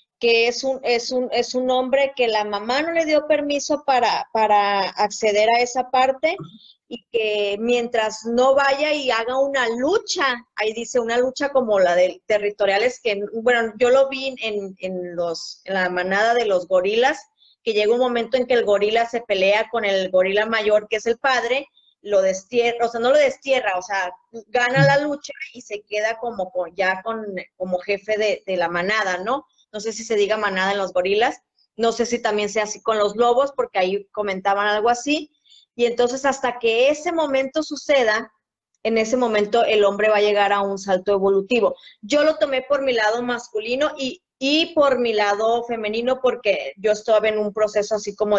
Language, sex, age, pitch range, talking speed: Spanish, female, 30-49, 205-255 Hz, 195 wpm